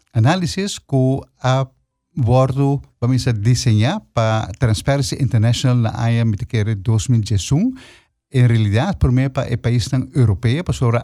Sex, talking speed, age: male, 115 wpm, 50-69